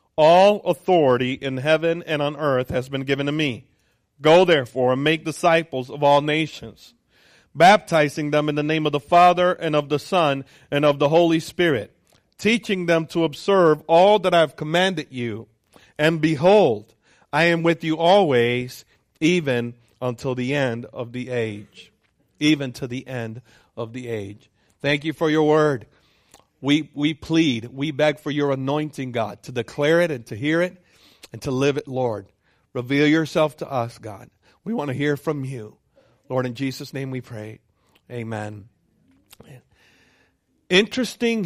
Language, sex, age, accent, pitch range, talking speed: English, male, 50-69, American, 125-170 Hz, 165 wpm